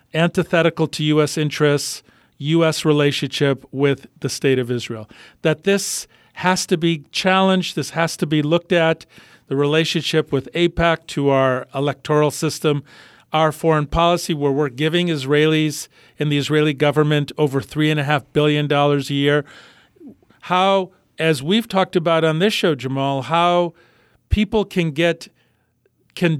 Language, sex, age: English, male, 50-69